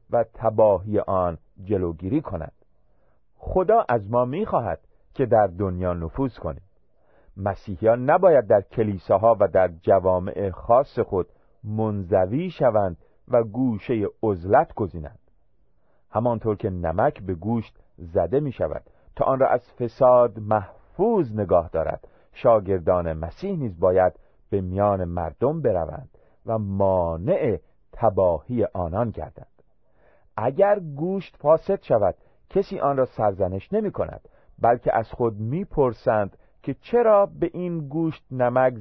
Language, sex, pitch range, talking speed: Persian, male, 95-140 Hz, 120 wpm